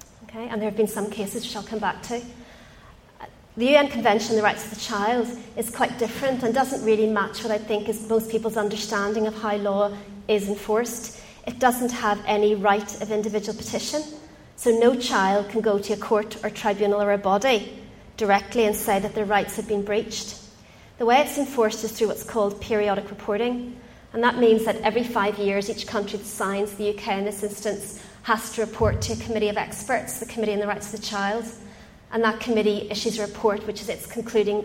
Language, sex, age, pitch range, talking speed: English, female, 30-49, 205-230 Hz, 210 wpm